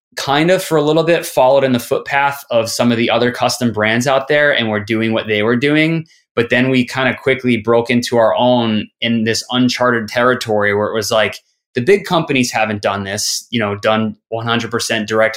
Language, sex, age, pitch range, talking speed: English, male, 20-39, 105-125 Hz, 220 wpm